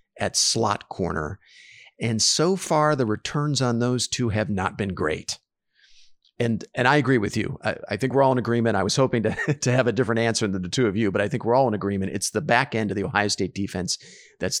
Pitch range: 100-125 Hz